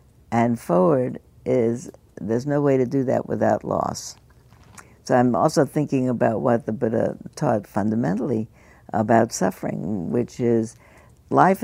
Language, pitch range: English, 115-135 Hz